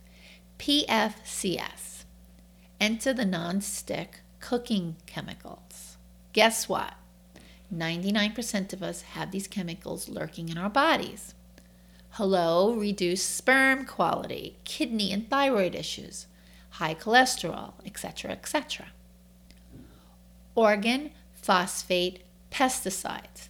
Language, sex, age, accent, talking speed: English, female, 40-59, American, 85 wpm